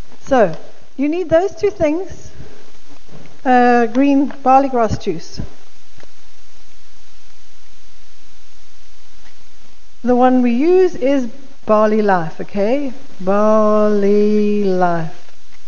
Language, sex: English, female